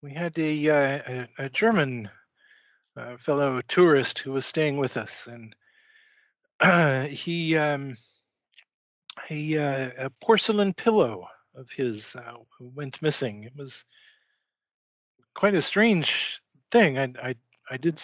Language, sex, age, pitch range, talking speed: English, male, 50-69, 130-160 Hz, 130 wpm